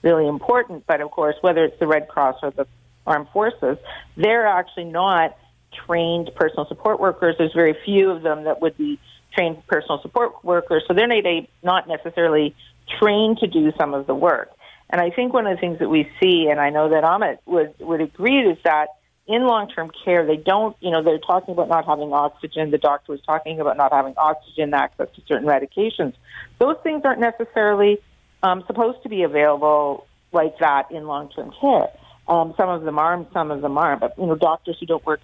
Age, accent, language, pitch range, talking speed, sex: 50-69, American, English, 150-195 Hz, 205 wpm, female